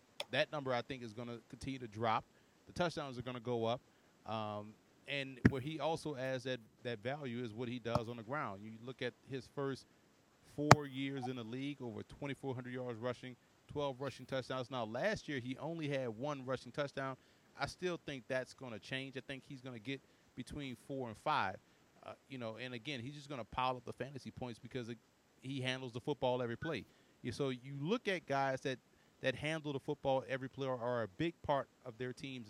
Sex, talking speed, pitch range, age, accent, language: male, 220 wpm, 120-140 Hz, 30-49, American, English